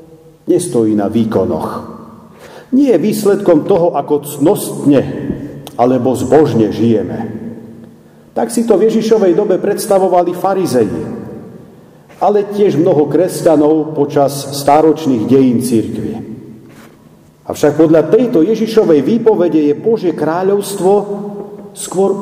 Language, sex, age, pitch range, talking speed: Slovak, male, 50-69, 160-215 Hz, 100 wpm